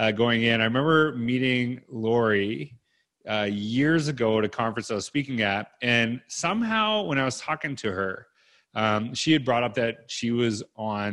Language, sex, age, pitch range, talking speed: English, male, 30-49, 110-130 Hz, 185 wpm